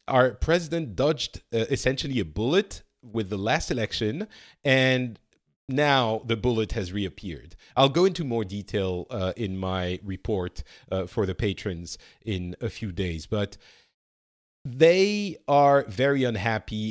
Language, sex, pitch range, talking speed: English, male, 100-130 Hz, 140 wpm